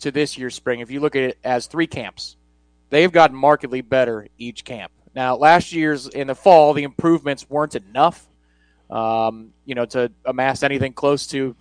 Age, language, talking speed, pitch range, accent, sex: 30-49, English, 185 wpm, 125-155 Hz, American, male